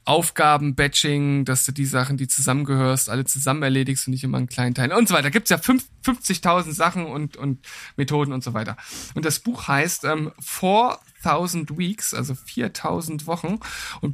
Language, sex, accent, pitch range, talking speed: German, male, German, 140-175 Hz, 185 wpm